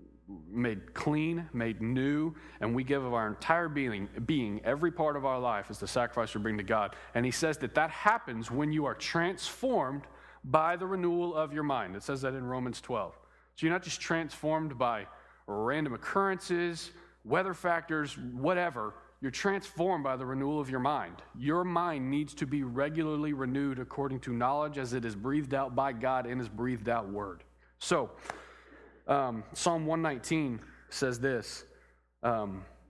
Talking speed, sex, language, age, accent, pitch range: 170 wpm, male, English, 40-59, American, 105-145 Hz